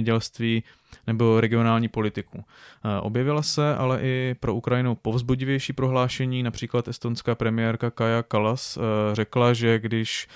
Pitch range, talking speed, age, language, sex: 110-125 Hz, 110 wpm, 20-39, Czech, male